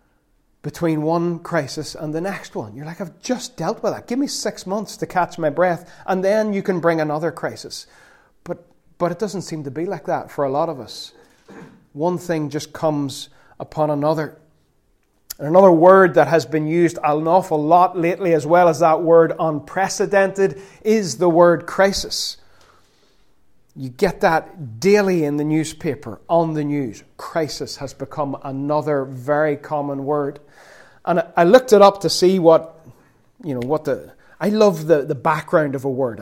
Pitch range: 150-175 Hz